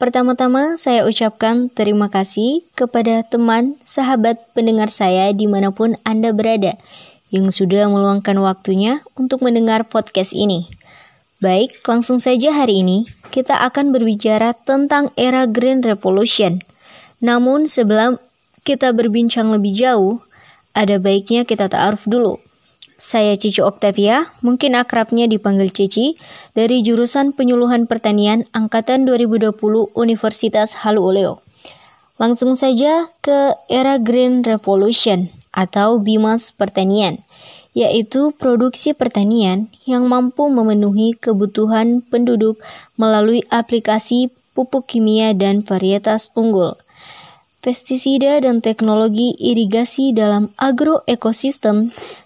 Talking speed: 100 wpm